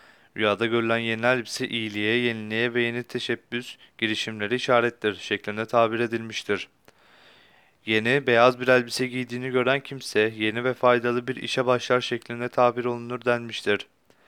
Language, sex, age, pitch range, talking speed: Turkish, male, 30-49, 115-130 Hz, 130 wpm